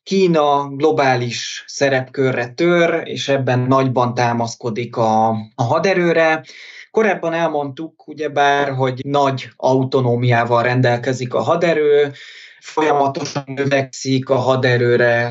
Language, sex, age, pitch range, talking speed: Hungarian, male, 20-39, 120-155 Hz, 95 wpm